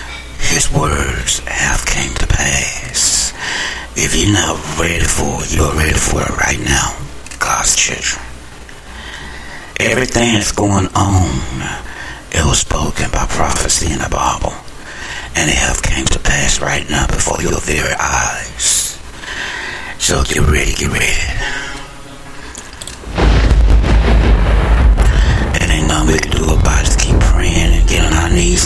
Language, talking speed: English, 135 wpm